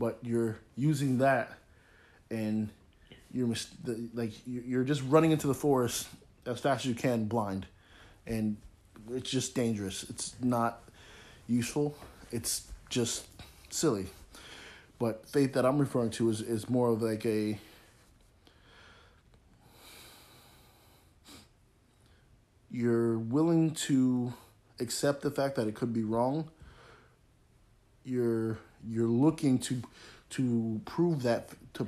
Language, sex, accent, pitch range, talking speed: English, male, American, 110-130 Hz, 115 wpm